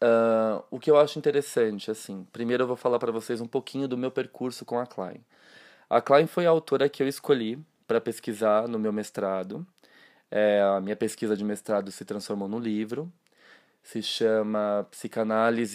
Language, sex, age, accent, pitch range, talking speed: Portuguese, male, 20-39, Brazilian, 105-130 Hz, 180 wpm